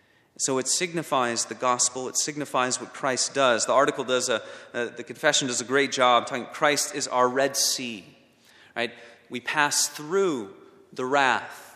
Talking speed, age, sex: 170 wpm, 30-49, male